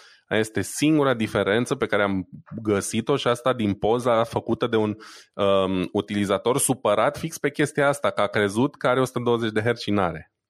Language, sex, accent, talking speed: Romanian, male, native, 185 wpm